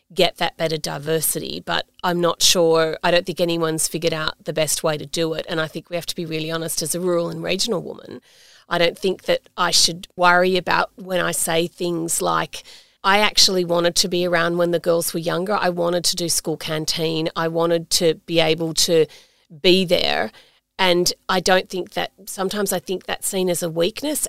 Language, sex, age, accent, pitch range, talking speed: English, female, 40-59, Australian, 170-205 Hz, 210 wpm